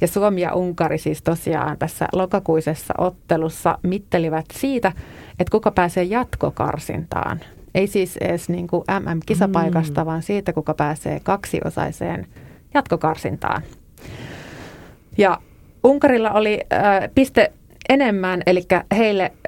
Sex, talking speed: female, 100 wpm